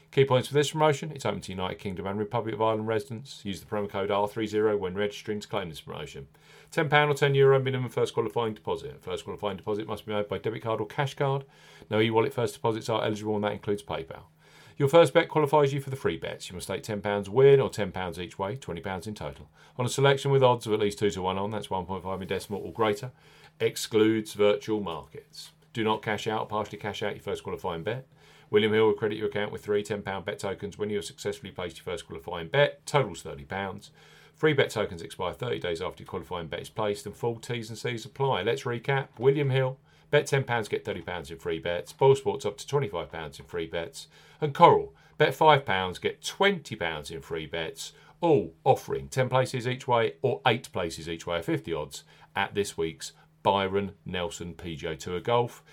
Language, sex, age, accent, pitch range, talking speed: English, male, 40-59, British, 105-145 Hz, 215 wpm